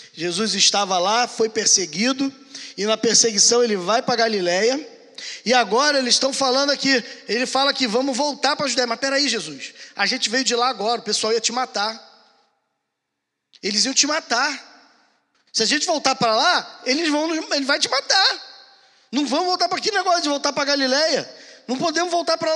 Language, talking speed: Portuguese, 190 wpm